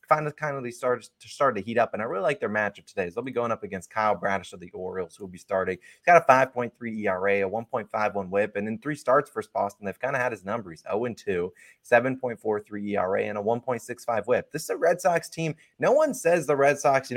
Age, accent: 20-39, American